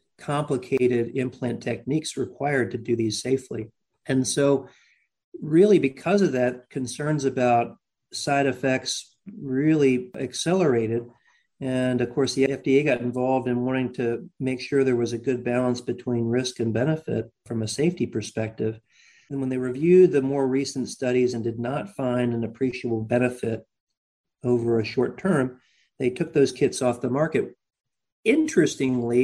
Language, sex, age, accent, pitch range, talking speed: English, male, 40-59, American, 120-140 Hz, 150 wpm